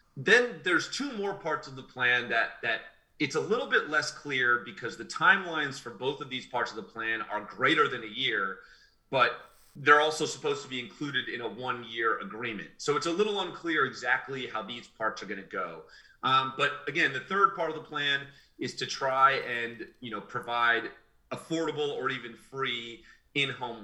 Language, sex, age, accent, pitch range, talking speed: English, male, 30-49, American, 115-155 Hz, 190 wpm